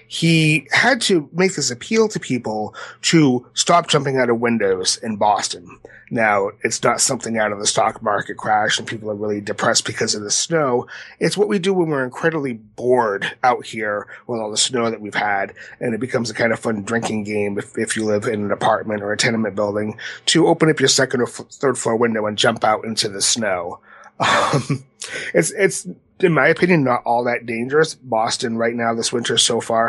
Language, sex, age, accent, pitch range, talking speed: English, male, 30-49, American, 110-130 Hz, 210 wpm